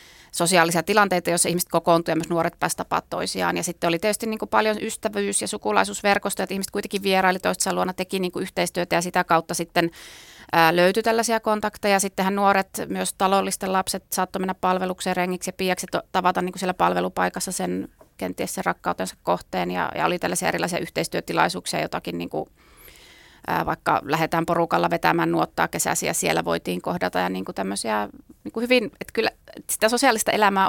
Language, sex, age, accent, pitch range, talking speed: Finnish, female, 30-49, native, 165-195 Hz, 165 wpm